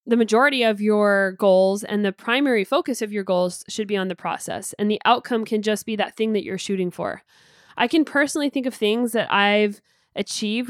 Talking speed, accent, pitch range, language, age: 215 wpm, American, 205-245 Hz, English, 10-29